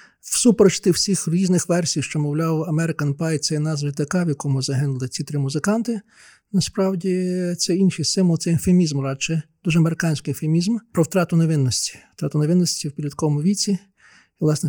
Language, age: Ukrainian, 50-69